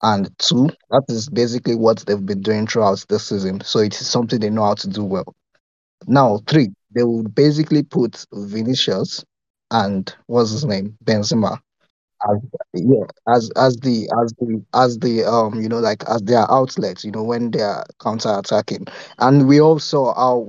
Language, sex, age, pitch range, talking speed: English, male, 20-39, 110-135 Hz, 140 wpm